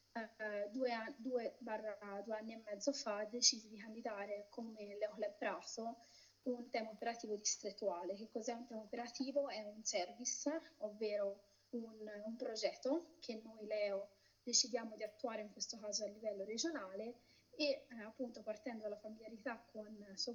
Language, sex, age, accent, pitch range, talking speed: Italian, female, 20-39, native, 210-240 Hz, 155 wpm